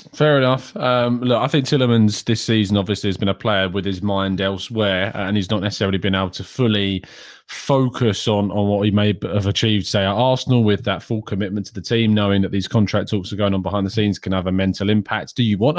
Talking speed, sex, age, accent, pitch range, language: 240 wpm, male, 20-39, British, 100-130 Hz, English